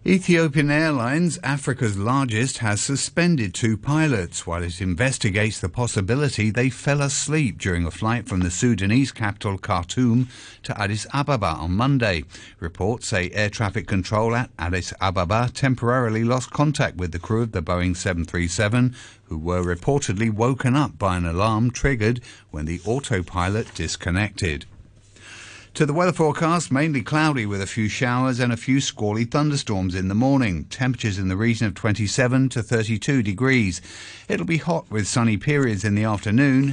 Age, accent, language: 50-69, British, English